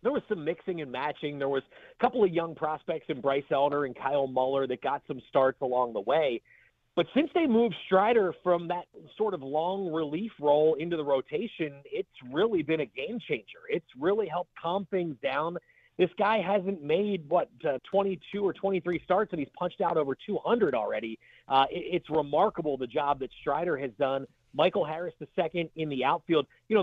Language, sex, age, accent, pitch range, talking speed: English, male, 30-49, American, 145-215 Hz, 195 wpm